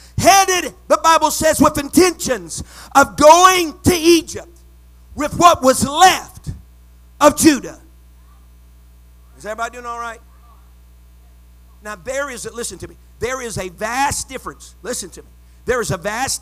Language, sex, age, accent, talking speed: English, male, 50-69, American, 145 wpm